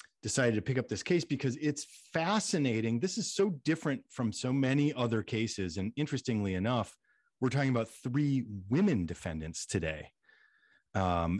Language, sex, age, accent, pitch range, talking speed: English, male, 40-59, American, 100-150 Hz, 155 wpm